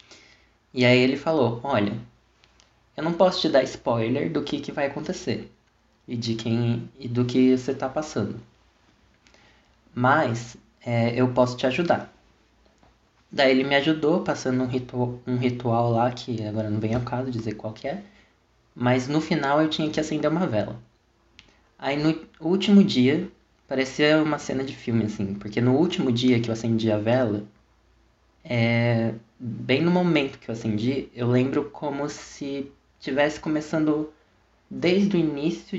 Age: 20-39